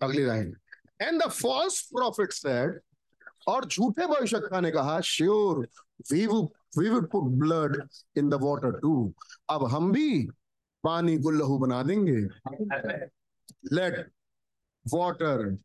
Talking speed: 90 wpm